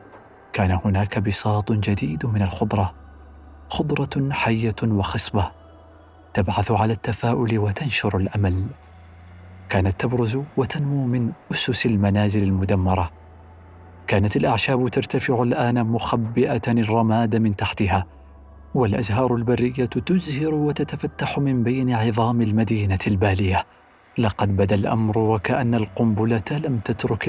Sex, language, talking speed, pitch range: male, Arabic, 100 wpm, 95-125 Hz